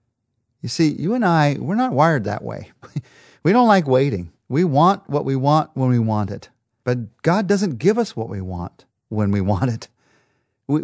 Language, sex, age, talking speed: English, male, 50-69, 200 wpm